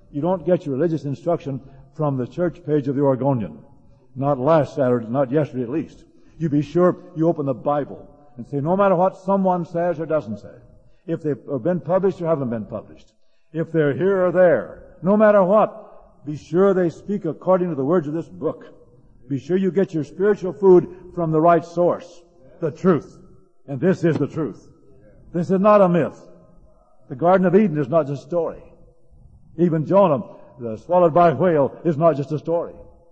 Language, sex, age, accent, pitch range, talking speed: English, male, 60-79, American, 140-180 Hz, 195 wpm